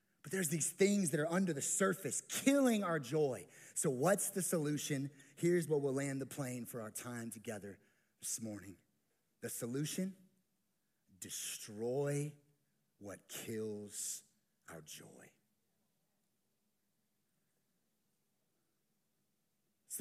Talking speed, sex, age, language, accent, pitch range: 110 wpm, male, 30-49, English, American, 130-210 Hz